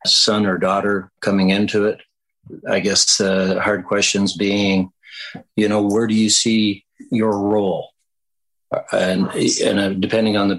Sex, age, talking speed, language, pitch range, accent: male, 60-79, 140 wpm, English, 95-110 Hz, American